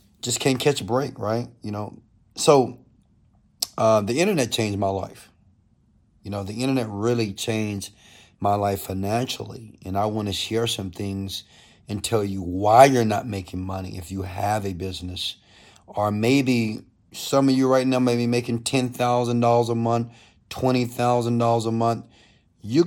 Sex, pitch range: male, 100-120 Hz